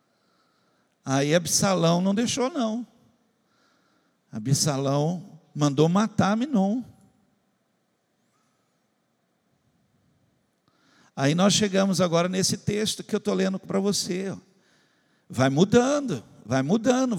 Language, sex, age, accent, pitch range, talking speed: Portuguese, male, 60-79, Brazilian, 165-230 Hz, 85 wpm